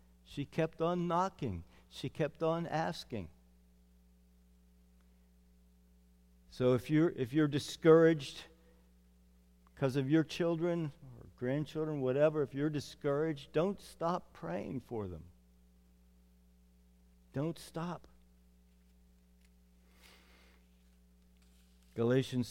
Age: 50-69